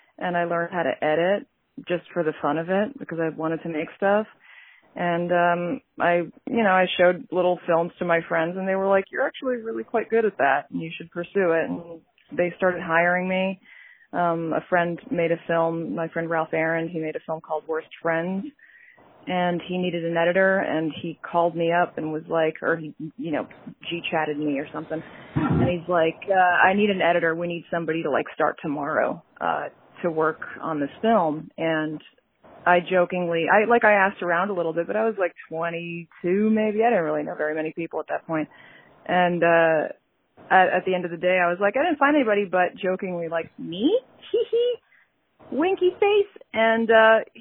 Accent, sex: American, female